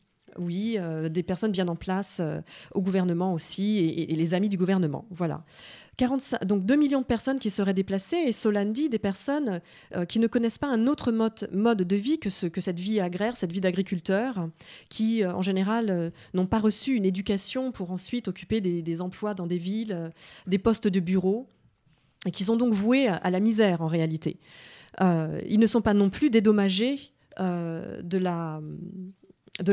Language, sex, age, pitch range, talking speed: French, female, 30-49, 180-225 Hz, 200 wpm